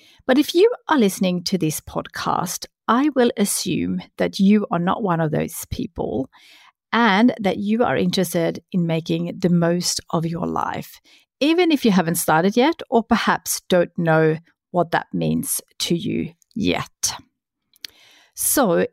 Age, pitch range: 50-69, 165-210 Hz